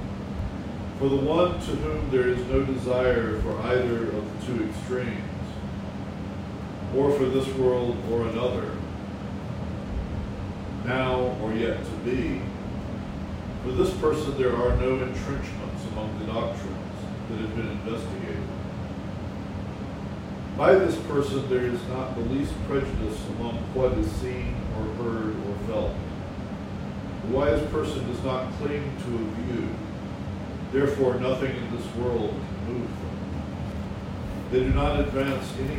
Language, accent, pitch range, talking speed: English, American, 100-125 Hz, 135 wpm